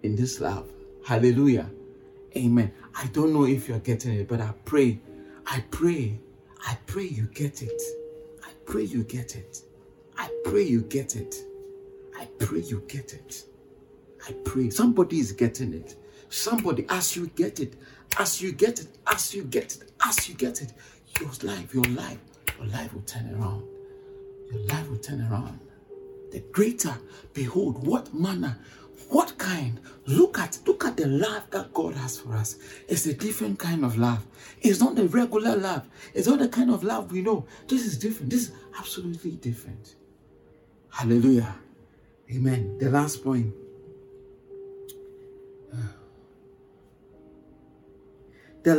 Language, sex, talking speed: English, male, 155 wpm